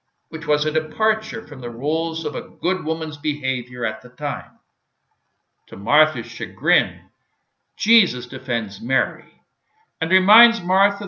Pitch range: 125-190 Hz